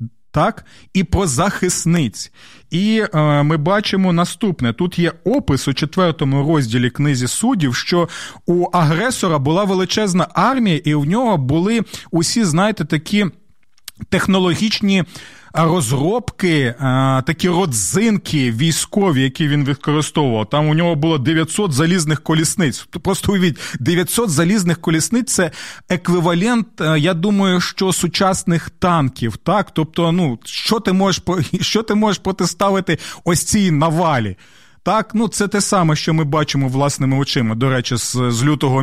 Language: Ukrainian